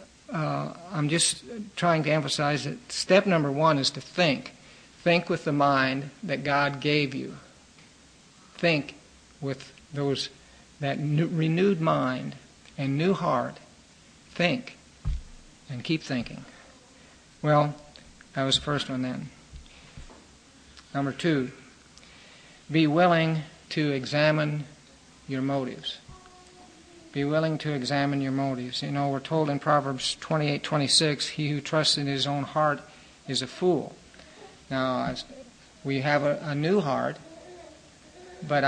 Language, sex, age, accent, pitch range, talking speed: English, male, 60-79, American, 135-160 Hz, 125 wpm